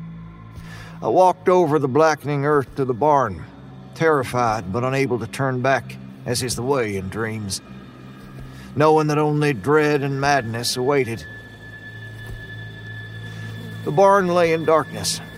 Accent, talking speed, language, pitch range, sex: American, 130 wpm, English, 110-145 Hz, male